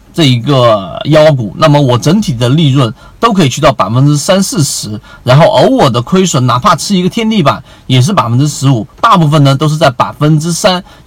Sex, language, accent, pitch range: male, Chinese, native, 125-165 Hz